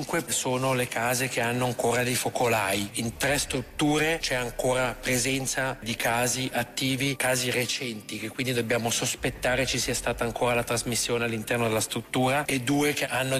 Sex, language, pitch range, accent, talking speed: male, Italian, 120-135 Hz, native, 160 wpm